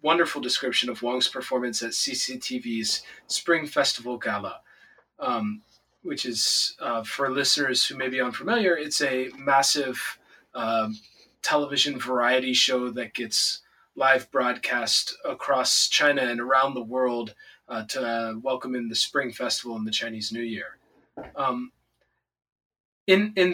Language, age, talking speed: English, 20-39, 135 wpm